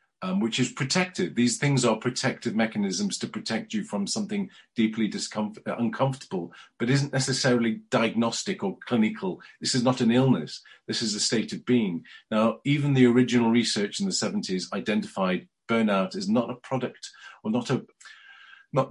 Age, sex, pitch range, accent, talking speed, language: 40-59, male, 105-145 Hz, British, 165 wpm, English